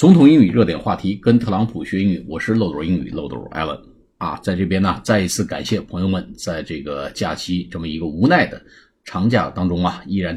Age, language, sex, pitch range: 50-69, Chinese, male, 90-105 Hz